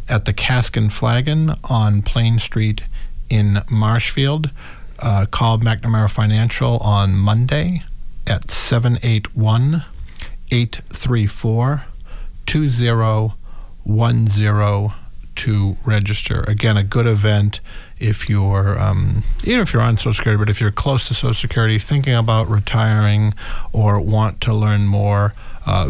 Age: 50-69